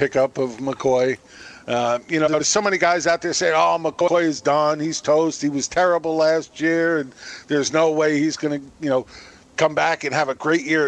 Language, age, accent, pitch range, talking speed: English, 50-69, American, 145-180 Hz, 220 wpm